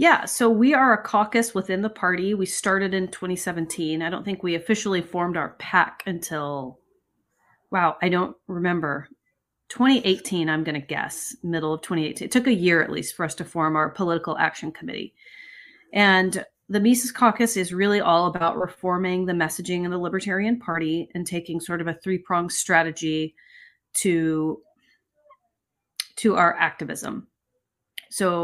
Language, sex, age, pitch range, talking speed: English, female, 30-49, 165-195 Hz, 160 wpm